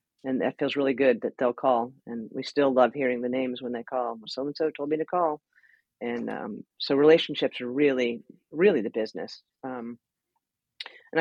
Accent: American